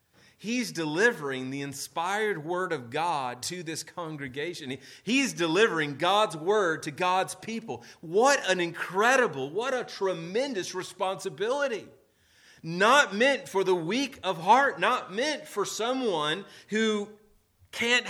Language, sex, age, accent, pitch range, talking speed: English, male, 30-49, American, 140-215 Hz, 125 wpm